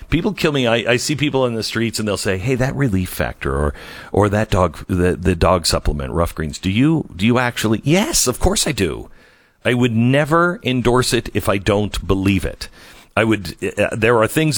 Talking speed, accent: 220 wpm, American